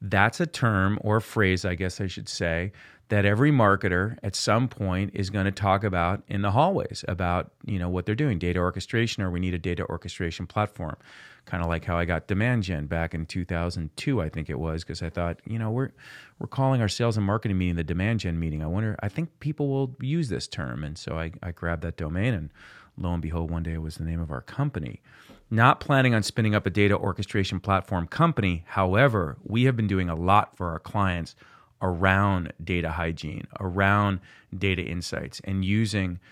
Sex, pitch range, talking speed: male, 90-110 Hz, 210 wpm